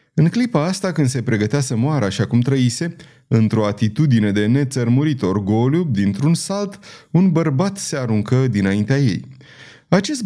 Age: 30-49